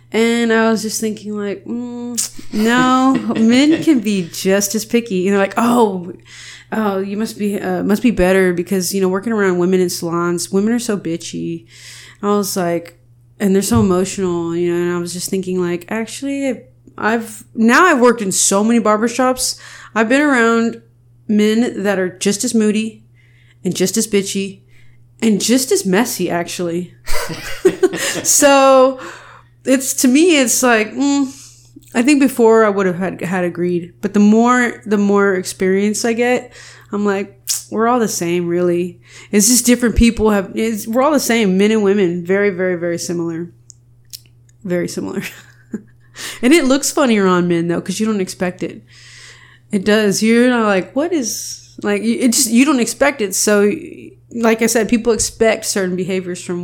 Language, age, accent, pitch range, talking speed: English, 30-49, American, 175-230 Hz, 175 wpm